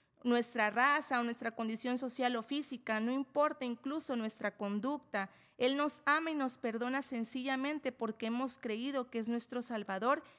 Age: 30-49